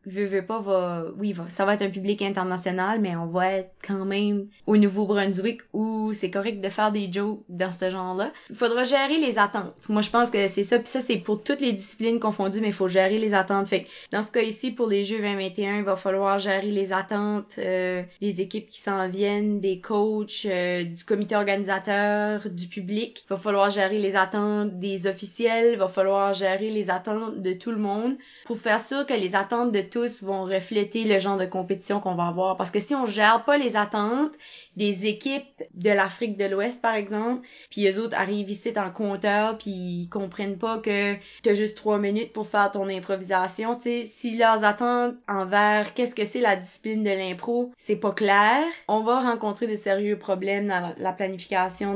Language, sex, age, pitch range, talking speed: French, female, 20-39, 195-220 Hz, 205 wpm